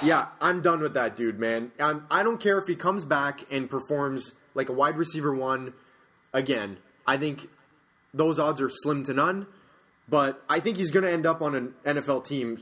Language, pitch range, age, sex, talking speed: English, 120-150 Hz, 20-39, male, 200 wpm